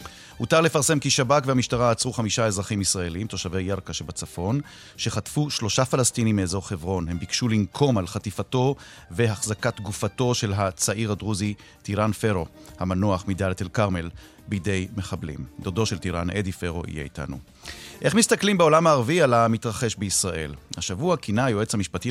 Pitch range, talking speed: 100-135 Hz, 145 wpm